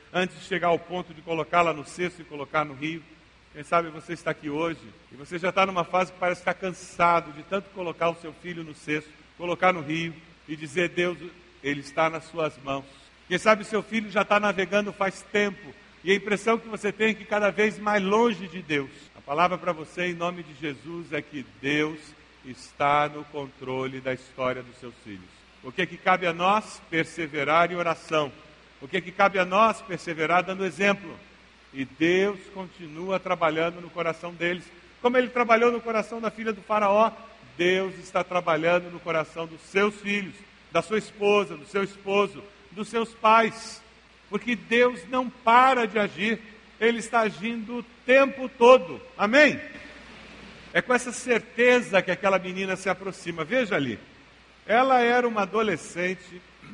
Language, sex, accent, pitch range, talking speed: Portuguese, male, Brazilian, 165-210 Hz, 180 wpm